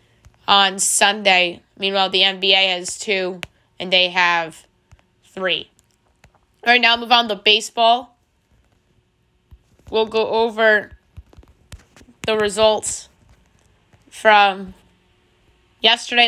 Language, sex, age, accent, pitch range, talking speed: English, female, 10-29, American, 185-220 Hz, 90 wpm